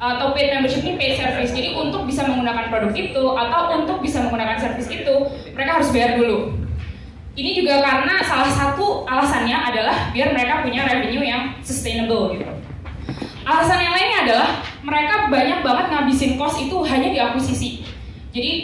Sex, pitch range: female, 245-310 Hz